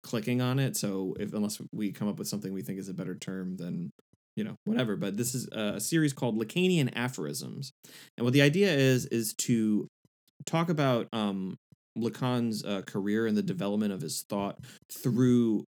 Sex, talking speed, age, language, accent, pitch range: male, 185 wpm, 20-39, English, American, 100-130 Hz